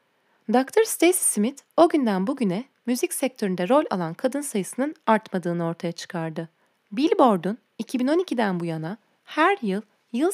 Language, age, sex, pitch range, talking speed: Turkish, 30-49, female, 185-285 Hz, 130 wpm